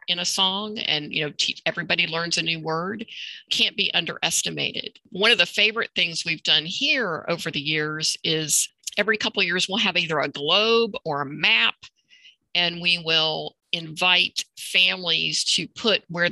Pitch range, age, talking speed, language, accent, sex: 160-215 Hz, 50-69, 175 wpm, English, American, female